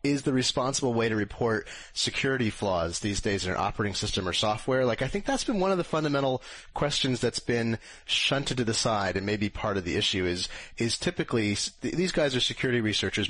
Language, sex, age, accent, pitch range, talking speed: English, male, 30-49, American, 95-120 Hz, 210 wpm